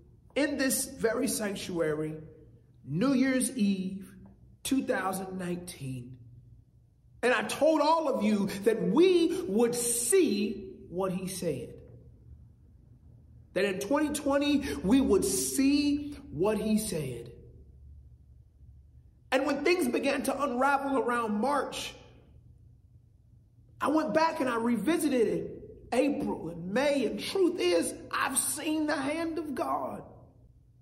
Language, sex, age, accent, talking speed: English, male, 40-59, American, 110 wpm